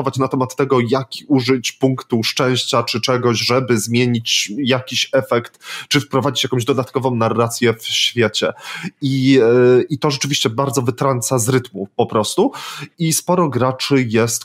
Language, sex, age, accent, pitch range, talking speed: Polish, male, 20-39, native, 115-135 Hz, 140 wpm